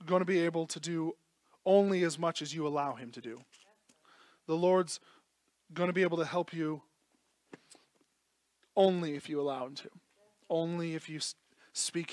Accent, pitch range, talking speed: American, 145-185 Hz, 170 wpm